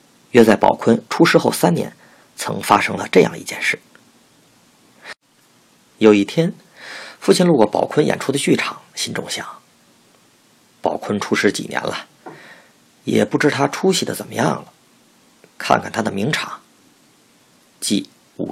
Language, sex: Chinese, male